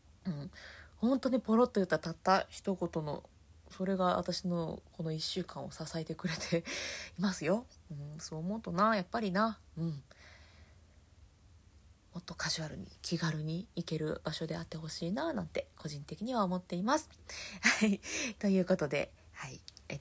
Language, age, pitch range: Japanese, 20-39, 155-200 Hz